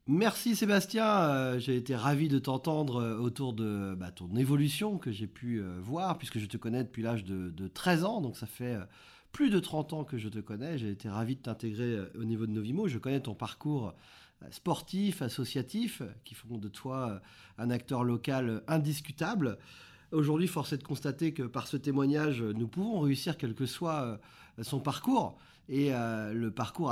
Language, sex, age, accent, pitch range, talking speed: French, male, 30-49, French, 115-155 Hz, 180 wpm